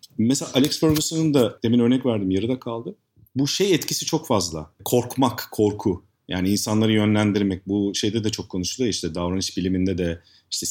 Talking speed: 165 wpm